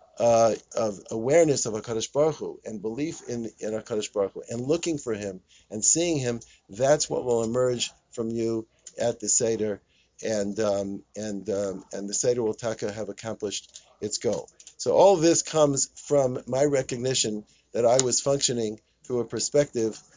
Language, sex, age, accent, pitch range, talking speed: English, male, 50-69, American, 110-135 Hz, 165 wpm